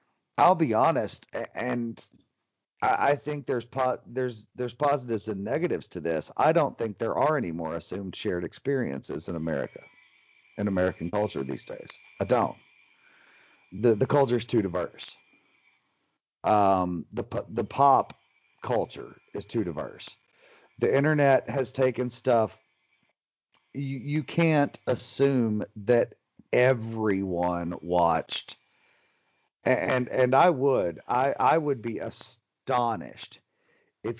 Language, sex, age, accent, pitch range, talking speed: English, male, 40-59, American, 105-140 Hz, 125 wpm